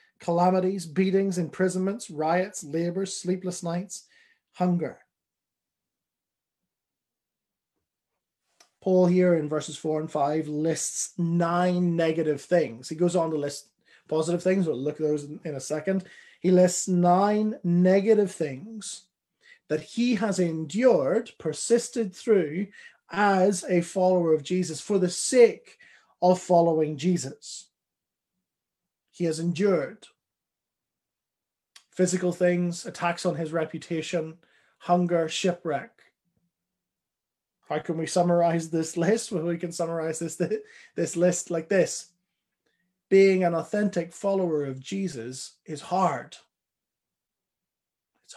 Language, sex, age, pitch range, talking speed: English, male, 30-49, 160-190 Hz, 110 wpm